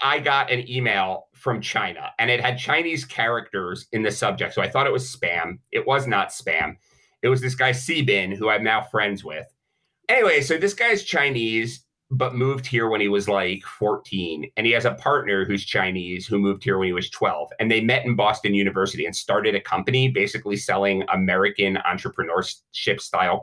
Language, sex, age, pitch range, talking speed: English, male, 30-49, 100-135 Hz, 195 wpm